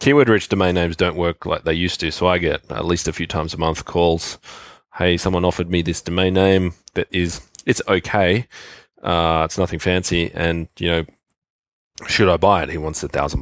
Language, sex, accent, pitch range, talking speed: English, male, Australian, 85-95 Hz, 205 wpm